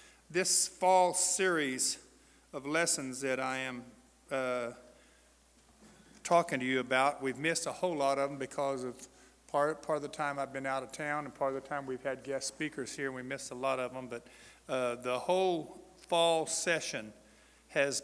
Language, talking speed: English, 185 wpm